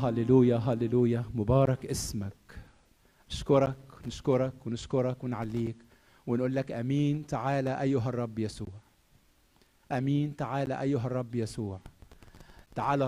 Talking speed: 95 wpm